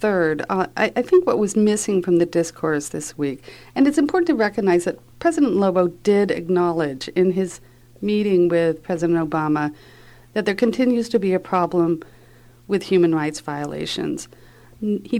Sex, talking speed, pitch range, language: female, 160 wpm, 145-195 Hz, English